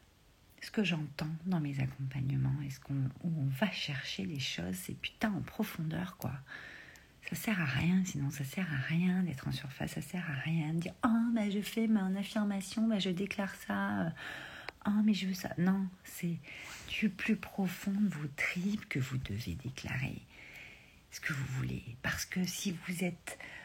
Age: 50-69